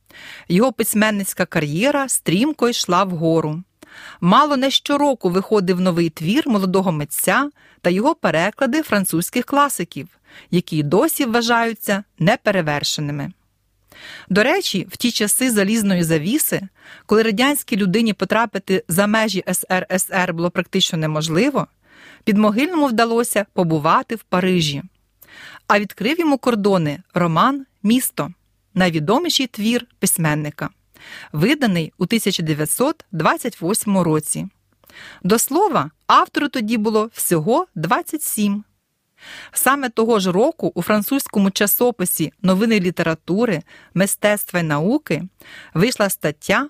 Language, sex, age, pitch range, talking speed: Ukrainian, female, 40-59, 175-240 Hz, 105 wpm